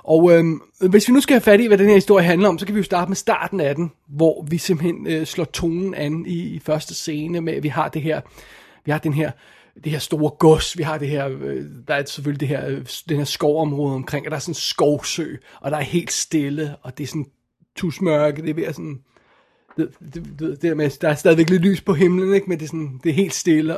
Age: 30-49